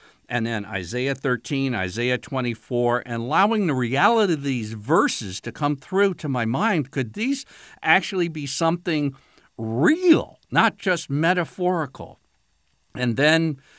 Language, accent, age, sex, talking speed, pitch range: English, American, 60-79, male, 130 wpm, 110-160 Hz